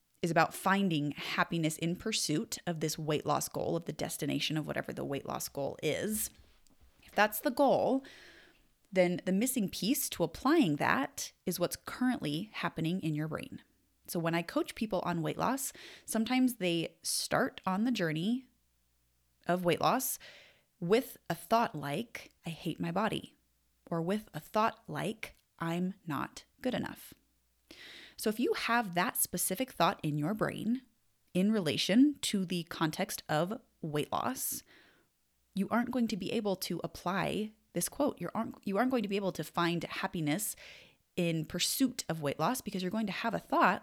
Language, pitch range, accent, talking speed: English, 165-235 Hz, American, 170 wpm